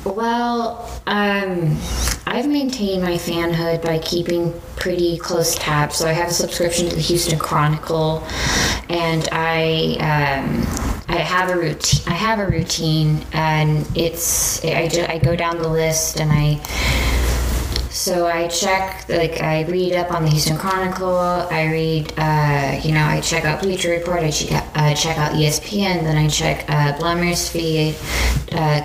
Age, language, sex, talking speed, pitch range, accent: 20-39, English, female, 160 wpm, 155-175 Hz, American